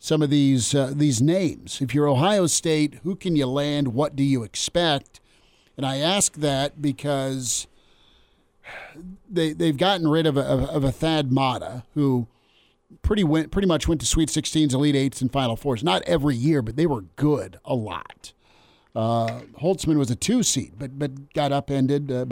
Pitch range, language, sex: 125-150 Hz, English, male